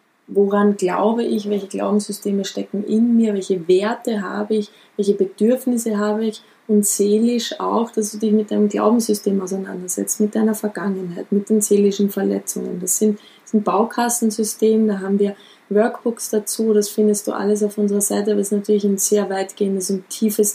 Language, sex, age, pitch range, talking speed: German, female, 20-39, 200-225 Hz, 170 wpm